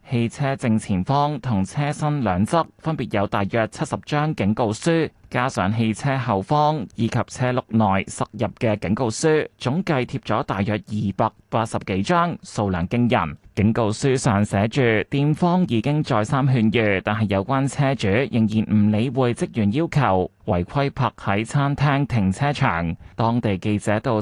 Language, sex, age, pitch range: Chinese, male, 20-39, 105-135 Hz